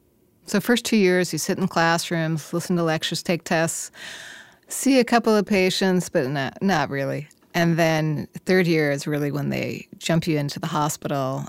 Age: 30-49